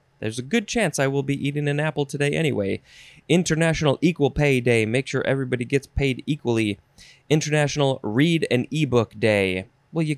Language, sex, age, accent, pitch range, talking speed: English, male, 20-39, American, 110-145 Hz, 170 wpm